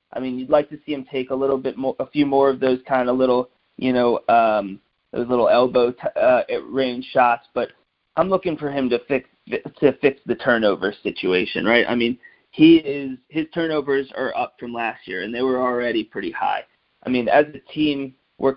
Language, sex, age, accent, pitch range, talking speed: English, male, 20-39, American, 125-140 Hz, 215 wpm